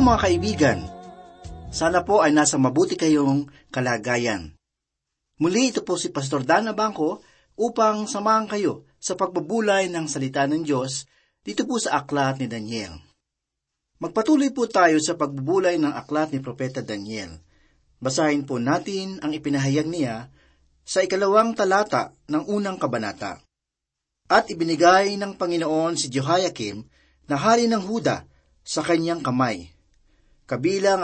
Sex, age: male, 40-59